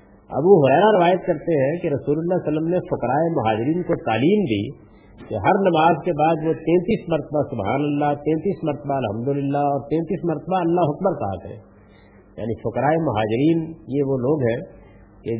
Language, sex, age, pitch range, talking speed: Urdu, male, 50-69, 115-160 Hz, 185 wpm